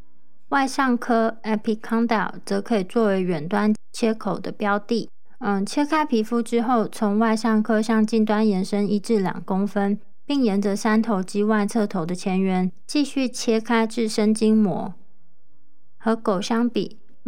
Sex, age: female, 20-39